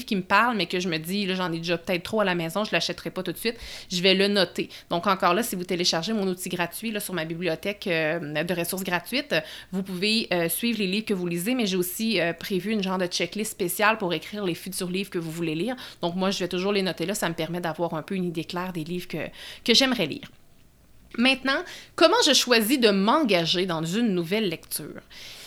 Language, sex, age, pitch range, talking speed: French, female, 30-49, 175-215 Hz, 245 wpm